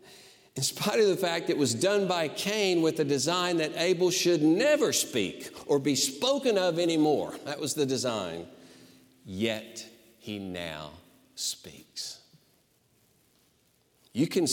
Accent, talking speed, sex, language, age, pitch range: American, 135 wpm, male, English, 50-69, 105-175 Hz